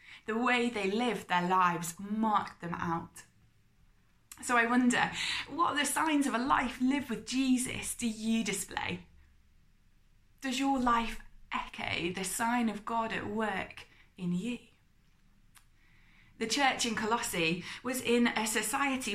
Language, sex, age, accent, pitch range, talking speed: English, female, 20-39, British, 190-245 Hz, 140 wpm